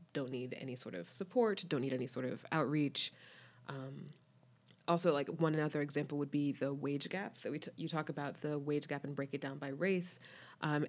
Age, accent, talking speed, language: 20-39, American, 215 wpm, English